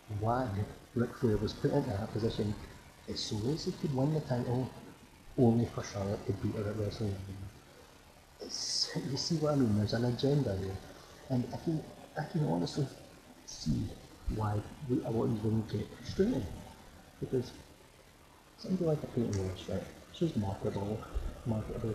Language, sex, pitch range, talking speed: English, male, 105-130 Hz, 155 wpm